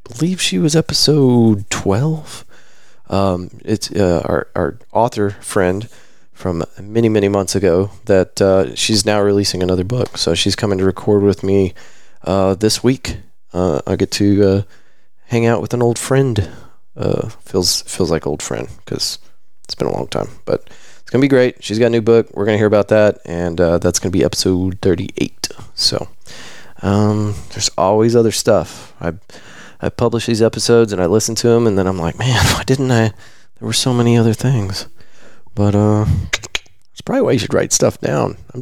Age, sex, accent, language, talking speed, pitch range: 30-49, male, American, English, 185 wpm, 95-120 Hz